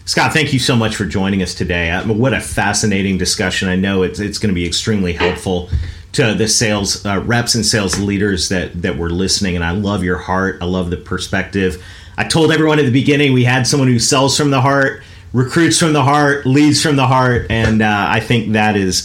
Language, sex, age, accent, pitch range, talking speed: English, male, 40-59, American, 95-115 Hz, 225 wpm